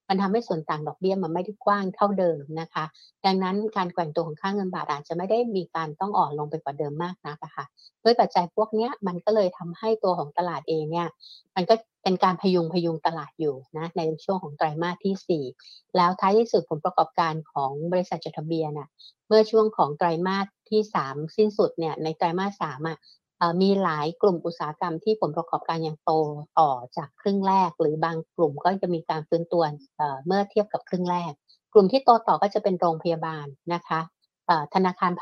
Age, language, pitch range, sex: 60-79, Thai, 160-195 Hz, female